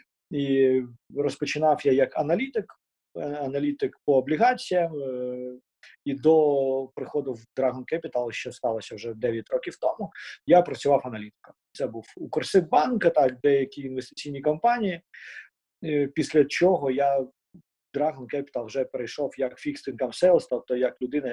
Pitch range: 125-155 Hz